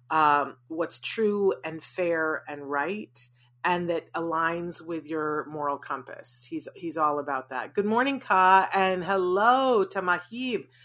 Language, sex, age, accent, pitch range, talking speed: English, female, 30-49, American, 155-205 Hz, 140 wpm